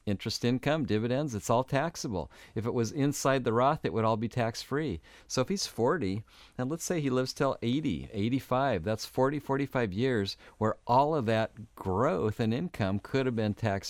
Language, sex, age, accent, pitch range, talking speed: English, male, 50-69, American, 95-120 Hz, 195 wpm